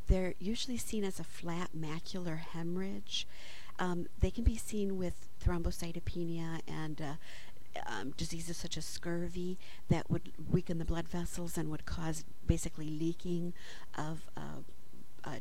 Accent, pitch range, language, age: American, 155-175 Hz, English, 50-69